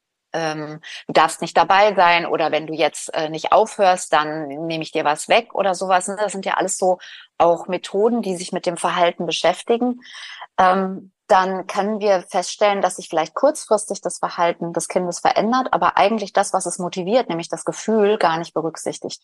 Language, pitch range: German, 175-215 Hz